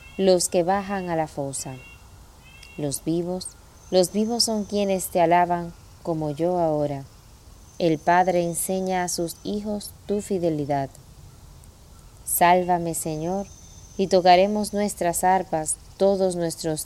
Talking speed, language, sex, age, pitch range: 120 wpm, Spanish, female, 20-39, 115-190 Hz